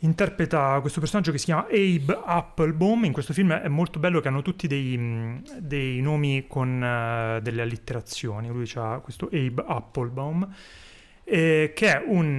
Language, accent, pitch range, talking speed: Italian, native, 120-155 Hz, 160 wpm